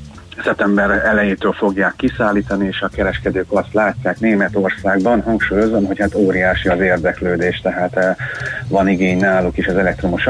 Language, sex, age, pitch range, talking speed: Hungarian, male, 30-49, 90-105 Hz, 135 wpm